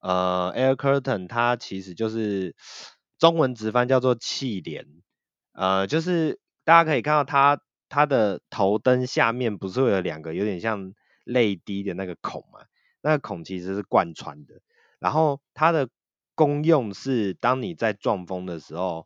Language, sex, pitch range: Chinese, male, 90-130 Hz